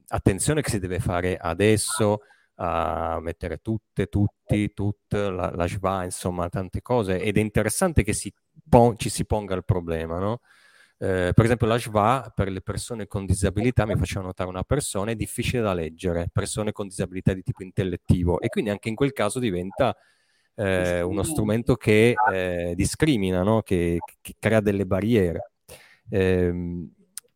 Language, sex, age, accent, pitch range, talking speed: Italian, male, 30-49, native, 95-115 Hz, 160 wpm